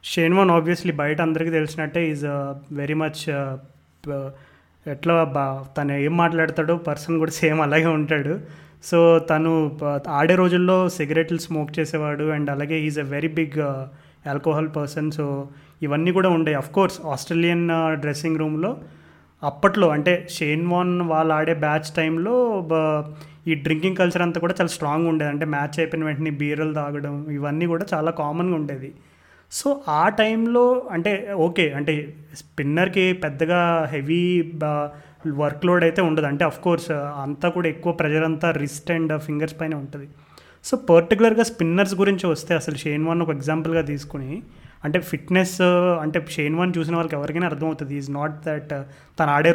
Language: Telugu